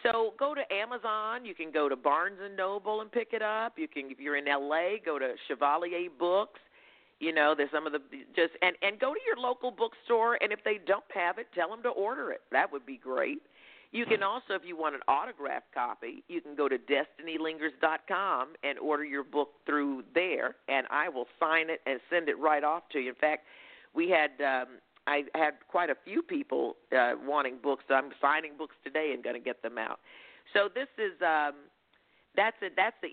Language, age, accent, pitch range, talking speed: English, 50-69, American, 150-235 Hz, 215 wpm